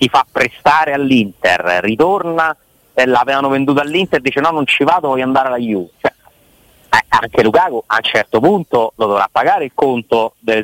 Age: 30-49